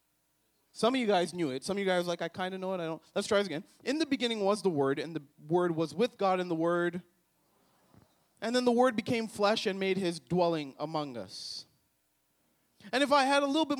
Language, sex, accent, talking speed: English, male, American, 250 wpm